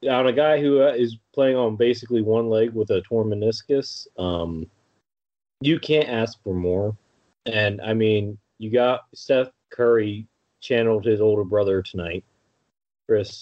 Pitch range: 95-110 Hz